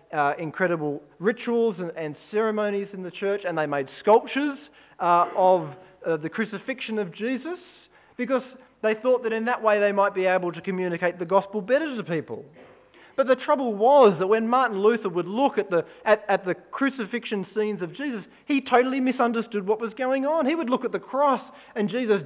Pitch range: 185-260 Hz